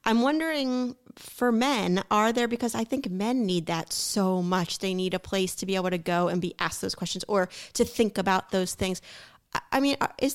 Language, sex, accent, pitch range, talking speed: English, female, American, 185-250 Hz, 215 wpm